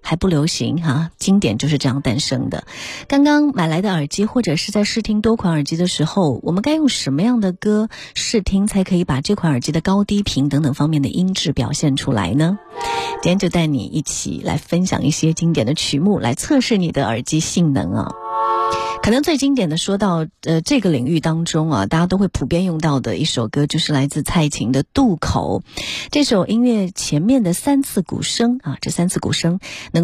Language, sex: Chinese, female